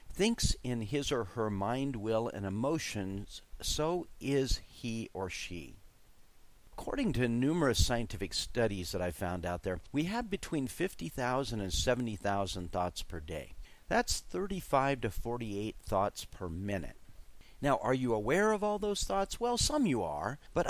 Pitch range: 100-140 Hz